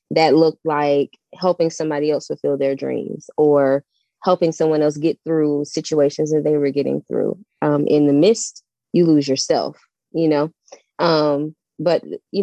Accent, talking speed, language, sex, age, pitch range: American, 160 wpm, English, female, 20-39, 150-175 Hz